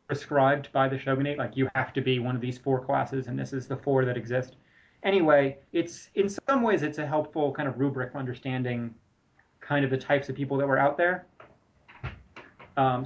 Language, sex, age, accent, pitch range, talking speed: English, male, 30-49, American, 125-145 Hz, 205 wpm